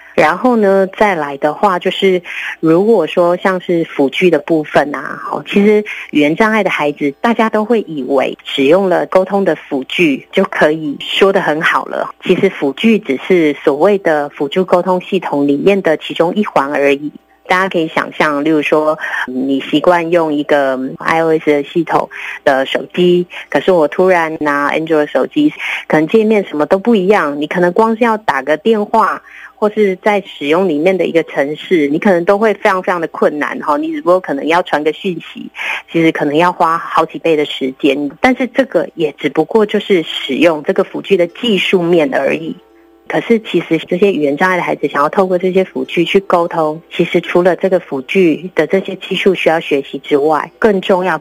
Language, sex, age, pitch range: Chinese, female, 30-49, 150-195 Hz